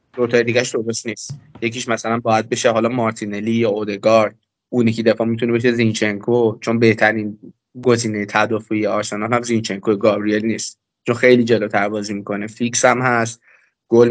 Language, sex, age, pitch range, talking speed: Persian, male, 20-39, 110-135 Hz, 155 wpm